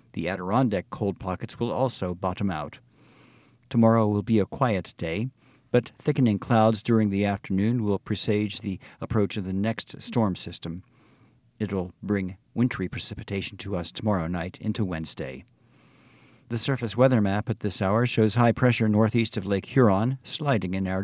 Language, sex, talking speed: English, male, 160 wpm